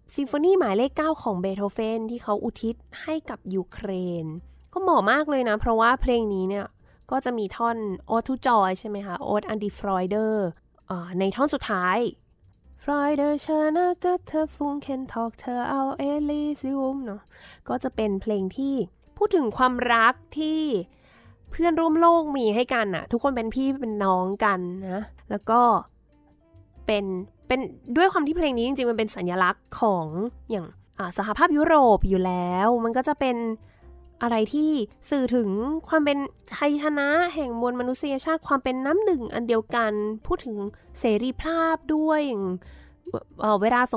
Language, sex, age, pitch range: Thai, female, 10-29, 205-280 Hz